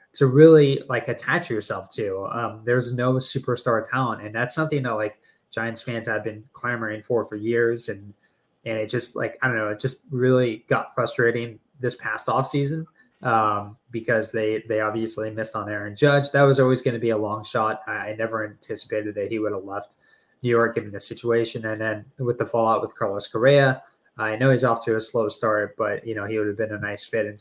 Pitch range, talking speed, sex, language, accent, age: 110-135 Hz, 220 wpm, male, English, American, 20-39